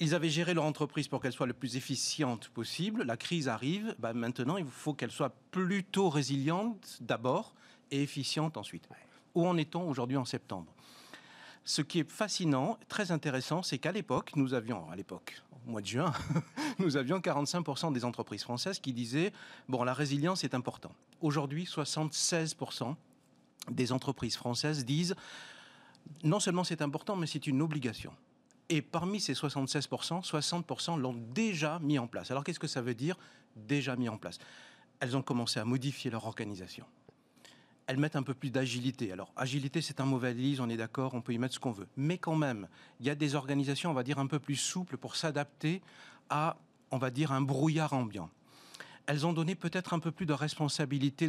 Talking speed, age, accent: 185 wpm, 40-59, French